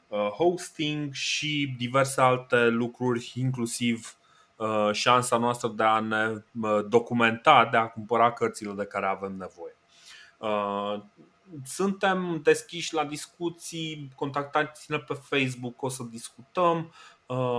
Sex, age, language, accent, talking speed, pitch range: male, 20-39, Romanian, native, 105 wpm, 115-150 Hz